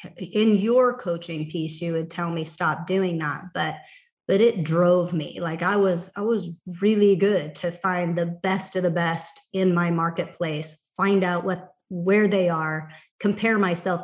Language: English